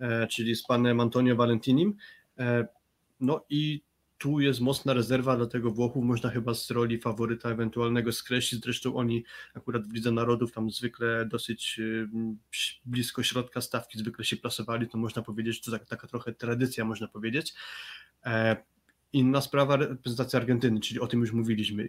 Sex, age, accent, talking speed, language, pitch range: male, 20-39, native, 150 wpm, Polish, 115-125 Hz